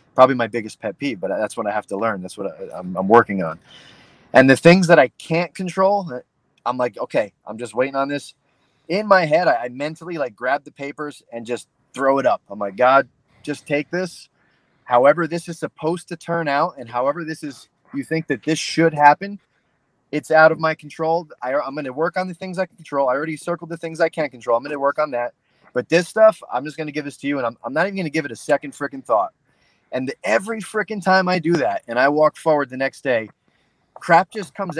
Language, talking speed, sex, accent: English, 245 wpm, male, American